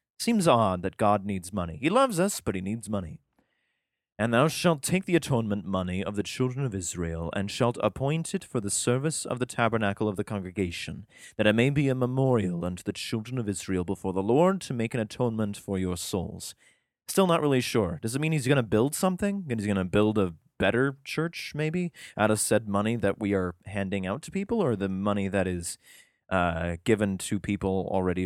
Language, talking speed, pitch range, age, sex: English, 215 wpm, 95-120 Hz, 30-49, male